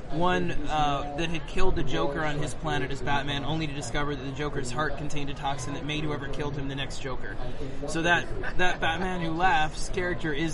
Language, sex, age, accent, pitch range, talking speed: English, male, 20-39, American, 135-155 Hz, 215 wpm